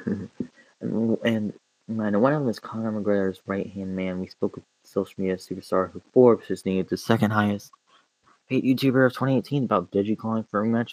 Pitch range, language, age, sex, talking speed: 95-110 Hz, English, 20-39, male, 185 wpm